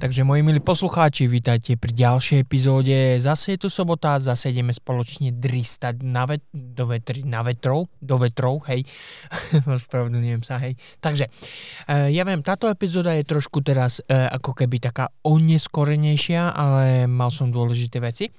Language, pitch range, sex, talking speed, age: Slovak, 130-160 Hz, male, 140 wpm, 20-39